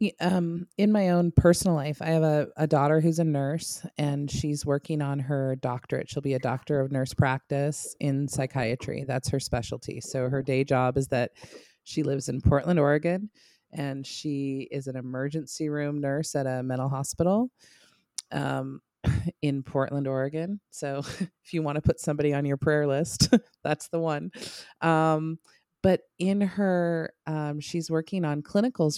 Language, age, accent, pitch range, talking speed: English, 20-39, American, 135-170 Hz, 170 wpm